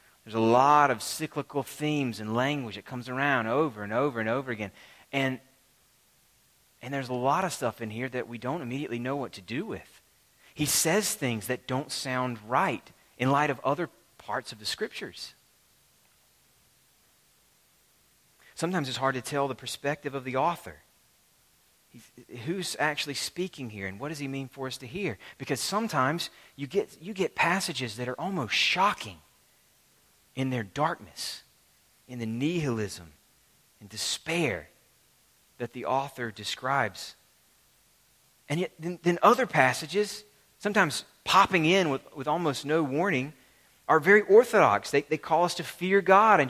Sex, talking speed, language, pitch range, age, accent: male, 155 wpm, English, 125-170 Hz, 30-49, American